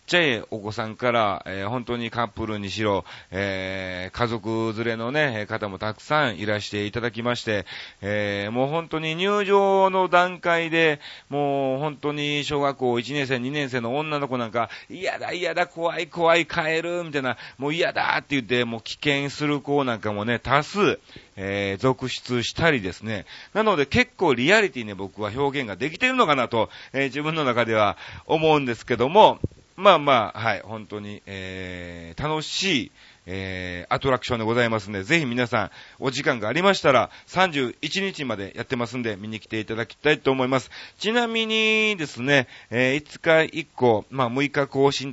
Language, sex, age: Japanese, male, 40-59